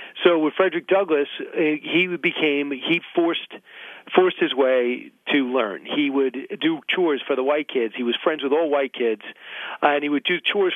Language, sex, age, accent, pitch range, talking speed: English, male, 40-59, American, 140-175 Hz, 185 wpm